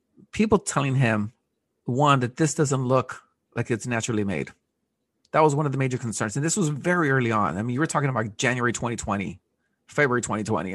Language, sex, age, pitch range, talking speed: English, male, 40-59, 115-140 Hz, 195 wpm